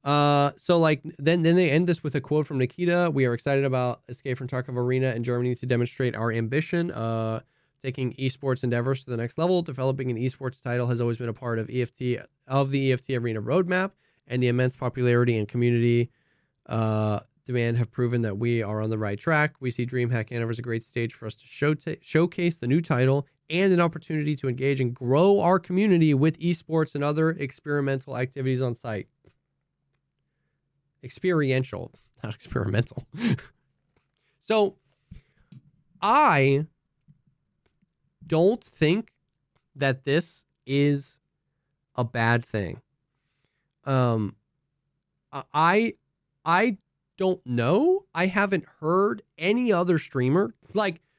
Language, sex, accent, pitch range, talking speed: English, male, American, 125-160 Hz, 150 wpm